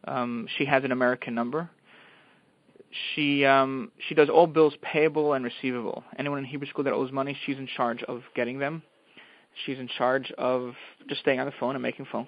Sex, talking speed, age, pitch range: male, 195 wpm, 20-39, 130-145 Hz